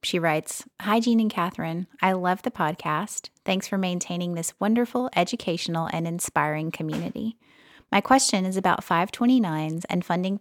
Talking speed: 150 wpm